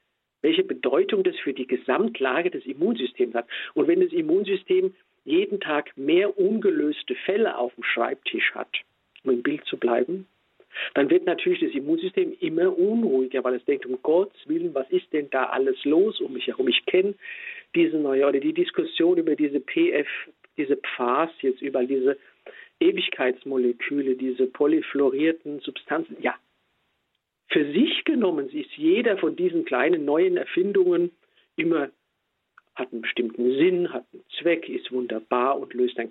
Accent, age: German, 50-69